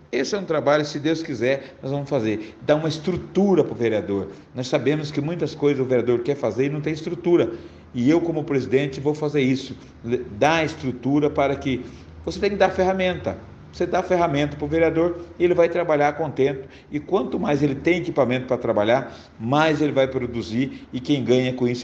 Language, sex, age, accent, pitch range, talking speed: Portuguese, male, 50-69, Brazilian, 120-160 Hz, 200 wpm